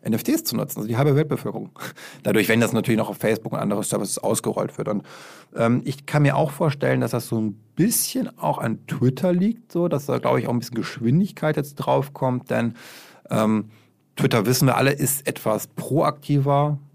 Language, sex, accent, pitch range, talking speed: German, male, German, 110-140 Hz, 200 wpm